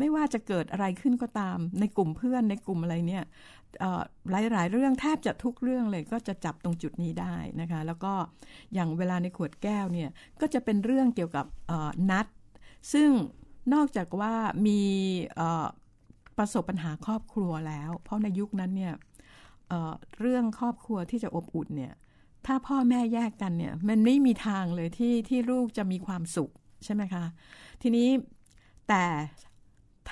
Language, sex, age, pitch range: Thai, female, 60-79, 175-240 Hz